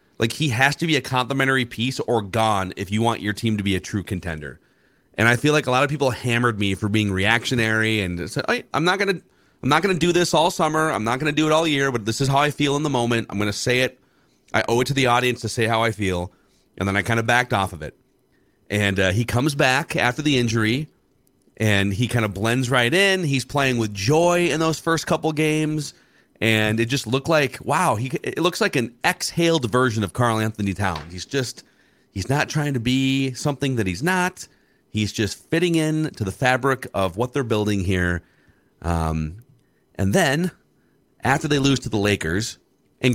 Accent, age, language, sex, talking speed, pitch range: American, 30-49, English, male, 220 wpm, 105-140 Hz